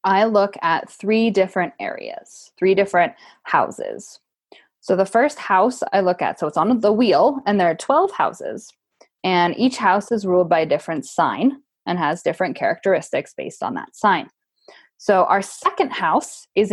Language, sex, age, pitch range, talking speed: English, female, 10-29, 180-245 Hz, 170 wpm